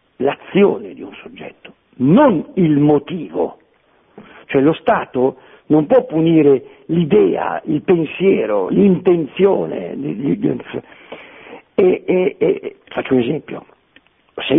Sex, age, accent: male, 60-79, native